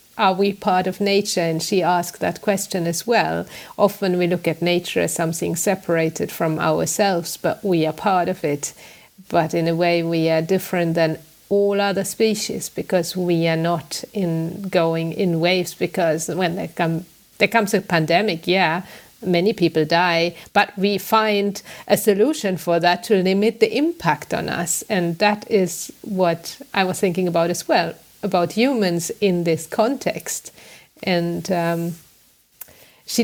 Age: 50-69